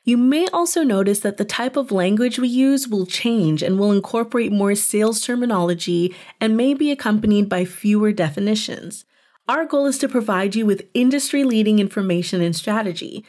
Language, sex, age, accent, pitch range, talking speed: English, female, 30-49, American, 185-240 Hz, 165 wpm